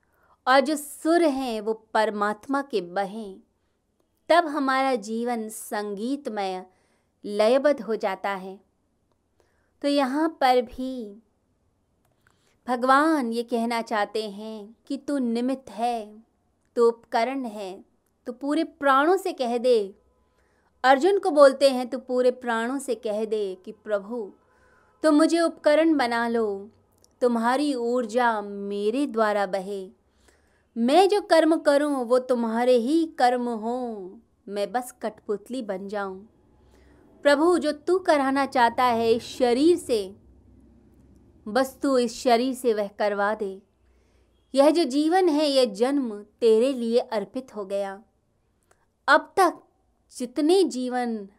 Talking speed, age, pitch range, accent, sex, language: 125 wpm, 20-39, 215-280 Hz, native, female, Hindi